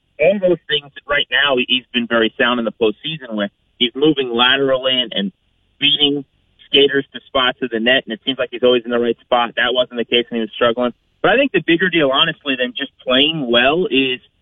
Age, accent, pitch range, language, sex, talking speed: 30-49, American, 120-150 Hz, English, male, 235 wpm